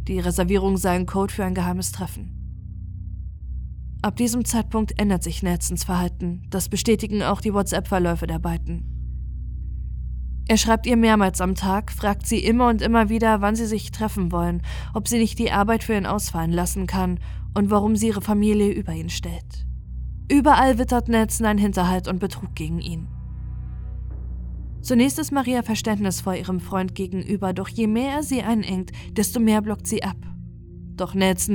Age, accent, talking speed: 20-39, German, 165 wpm